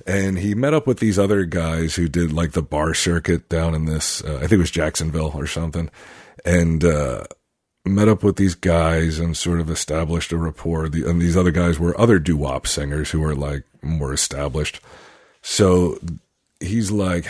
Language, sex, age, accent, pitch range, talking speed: English, male, 40-59, American, 80-95 Hz, 185 wpm